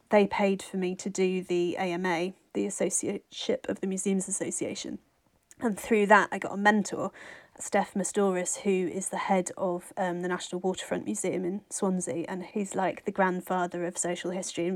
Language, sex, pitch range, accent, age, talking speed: English, female, 185-210 Hz, British, 30-49, 180 wpm